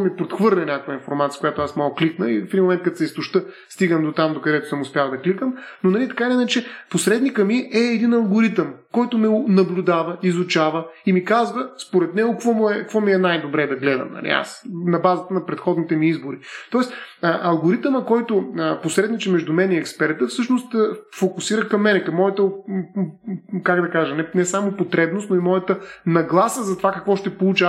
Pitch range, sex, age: 165-215 Hz, male, 30-49